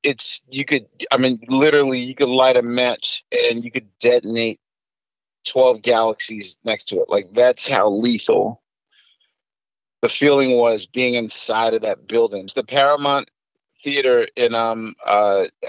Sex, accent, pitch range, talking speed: male, American, 115-140 Hz, 150 wpm